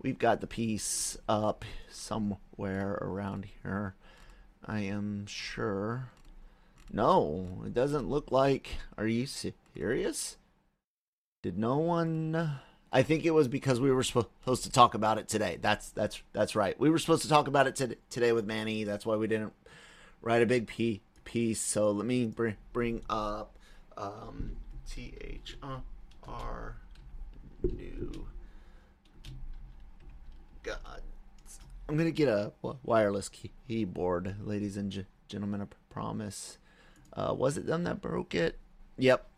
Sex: male